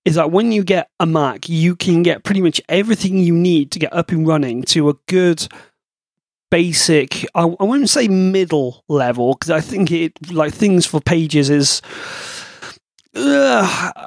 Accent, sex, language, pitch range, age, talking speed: British, male, English, 145-180 Hz, 30-49, 165 wpm